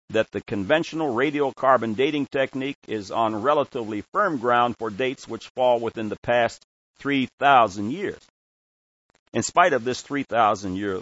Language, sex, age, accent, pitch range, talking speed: English, male, 60-79, American, 95-130 Hz, 135 wpm